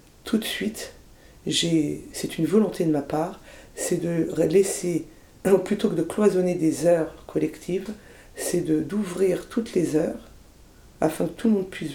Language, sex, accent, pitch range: French, female, French, 150-185 Hz